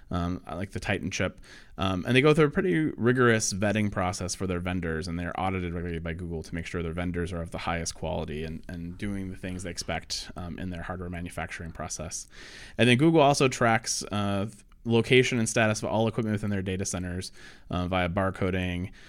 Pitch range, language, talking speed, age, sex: 95-115 Hz, English, 210 wpm, 20-39, male